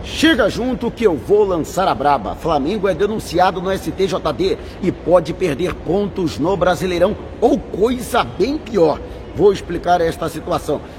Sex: male